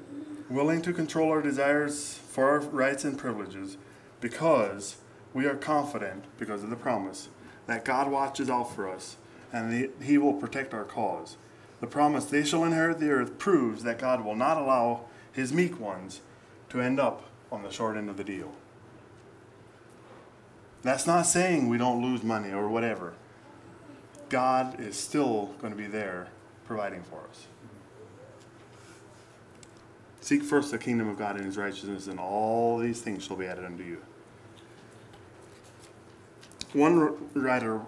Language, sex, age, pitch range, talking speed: English, male, 20-39, 110-145 Hz, 150 wpm